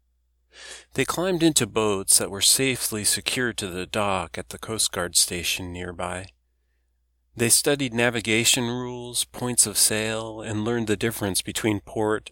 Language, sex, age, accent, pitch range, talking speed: English, male, 40-59, American, 90-110 Hz, 145 wpm